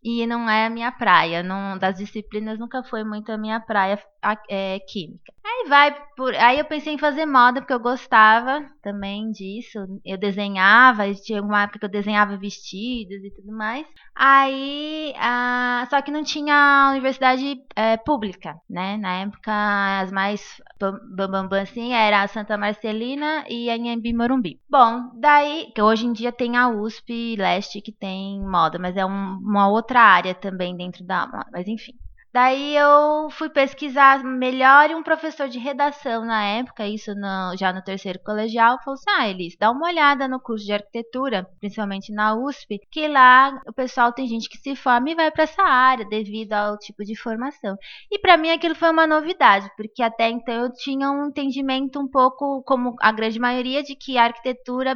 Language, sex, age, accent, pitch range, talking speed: Portuguese, female, 20-39, Brazilian, 205-265 Hz, 185 wpm